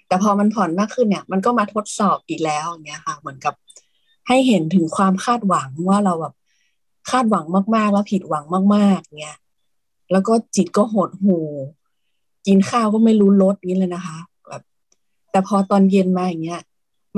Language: Thai